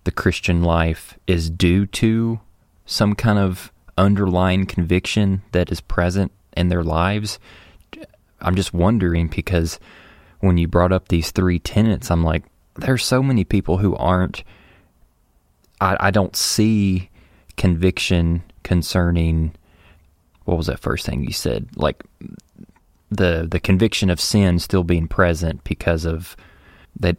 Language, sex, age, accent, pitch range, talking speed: English, male, 20-39, American, 85-95 Hz, 135 wpm